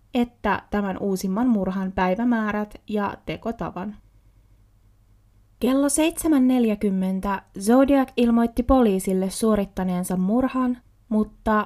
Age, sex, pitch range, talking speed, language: 20-39, female, 185-235 Hz, 75 wpm, Finnish